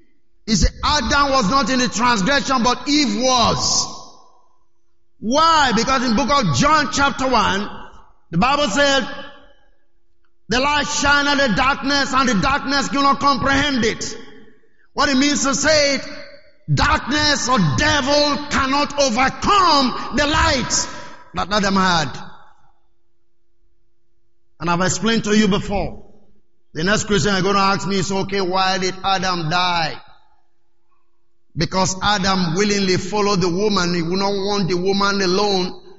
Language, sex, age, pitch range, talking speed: English, male, 50-69, 190-280 Hz, 140 wpm